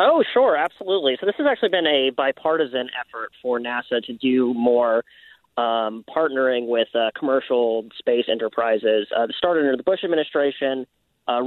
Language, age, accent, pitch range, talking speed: English, 30-49, American, 120-145 Hz, 160 wpm